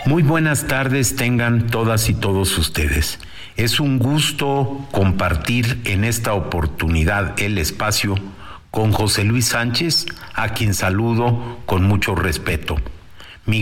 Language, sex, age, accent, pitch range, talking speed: Spanish, male, 50-69, Mexican, 90-115 Hz, 125 wpm